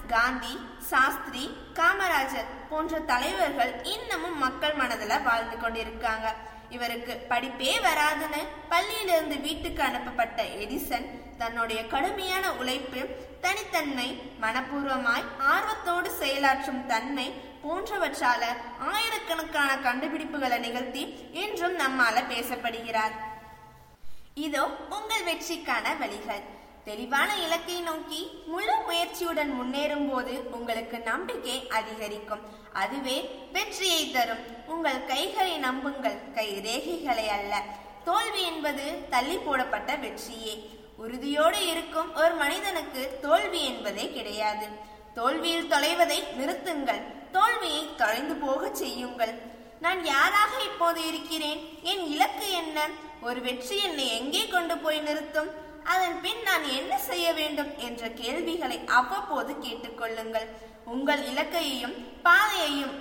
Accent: native